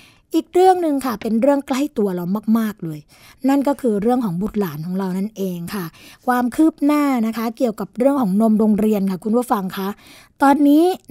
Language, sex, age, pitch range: Thai, female, 20-39, 195-250 Hz